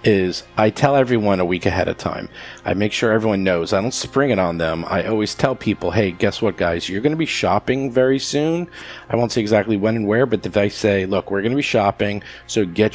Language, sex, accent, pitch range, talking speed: English, male, American, 100-125 Hz, 245 wpm